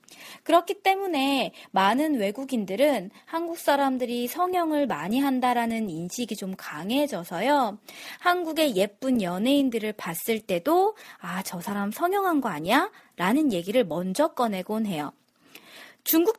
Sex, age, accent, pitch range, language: female, 20-39, native, 200-295 Hz, Korean